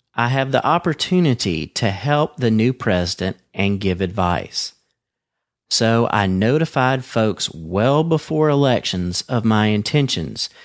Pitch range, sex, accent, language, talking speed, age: 95-135 Hz, male, American, English, 125 wpm, 40-59